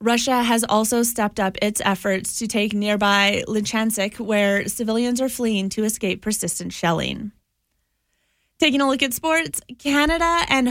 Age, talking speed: 30-49, 145 wpm